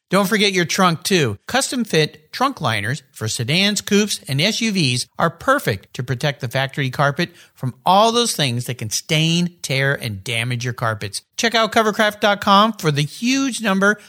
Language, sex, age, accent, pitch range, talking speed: English, male, 50-69, American, 135-210 Hz, 165 wpm